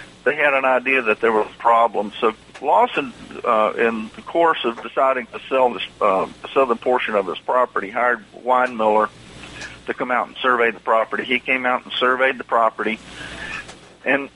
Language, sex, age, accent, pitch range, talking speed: English, male, 50-69, American, 110-135 Hz, 180 wpm